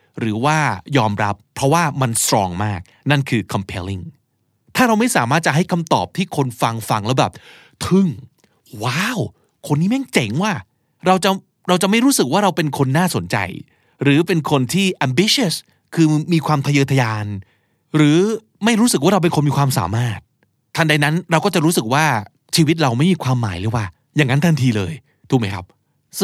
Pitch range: 120-180 Hz